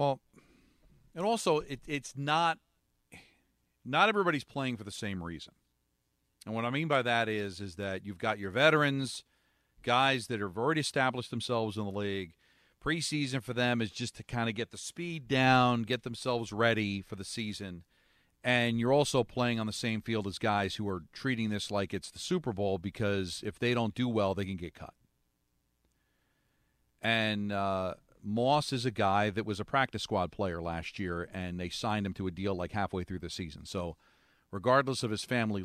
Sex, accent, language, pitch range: male, American, English, 95-125 Hz